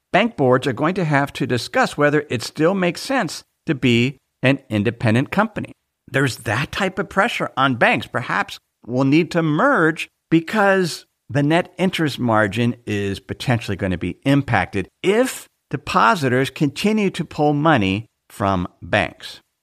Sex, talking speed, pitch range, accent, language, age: male, 150 wpm, 115-165 Hz, American, English, 50-69